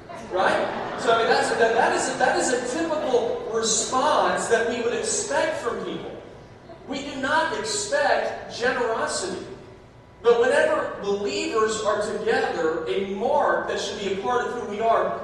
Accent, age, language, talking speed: American, 40-59, English, 150 wpm